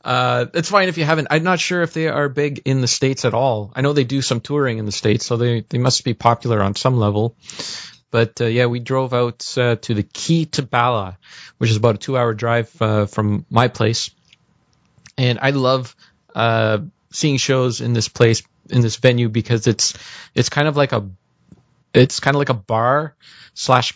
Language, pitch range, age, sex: English, 115-140 Hz, 20-39, male